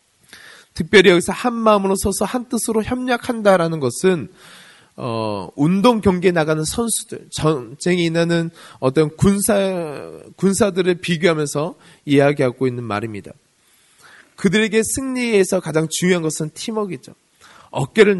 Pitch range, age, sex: 155-205 Hz, 20-39, male